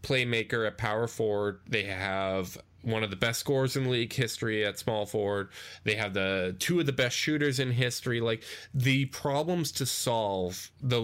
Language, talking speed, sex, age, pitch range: English, 180 wpm, male, 10-29, 100-120 Hz